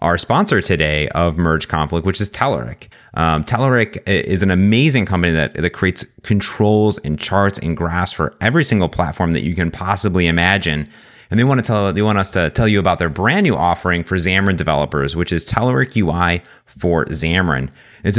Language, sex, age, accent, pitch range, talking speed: English, male, 30-49, American, 85-105 Hz, 190 wpm